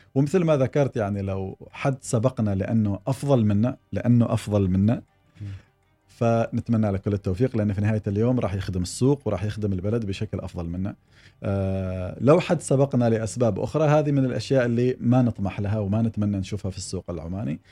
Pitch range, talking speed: 100-120 Hz, 165 wpm